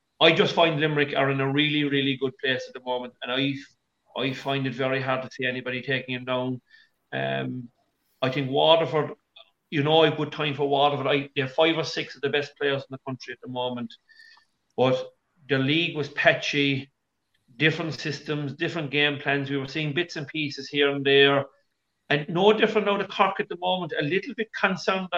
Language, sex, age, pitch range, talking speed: English, male, 40-59, 130-160 Hz, 205 wpm